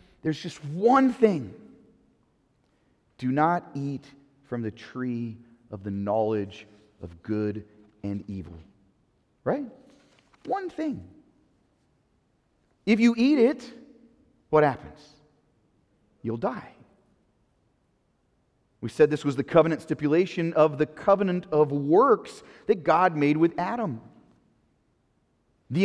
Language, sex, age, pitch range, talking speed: English, male, 40-59, 140-210 Hz, 105 wpm